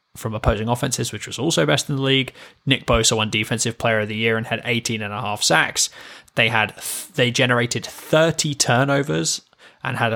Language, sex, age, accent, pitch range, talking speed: English, male, 10-29, British, 110-140 Hz, 195 wpm